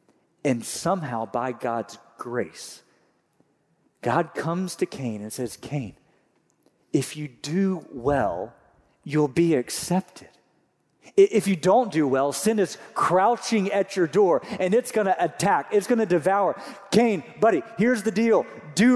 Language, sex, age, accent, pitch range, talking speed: English, male, 40-59, American, 165-220 Hz, 140 wpm